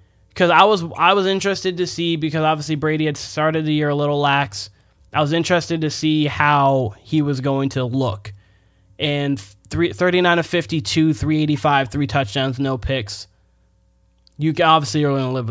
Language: English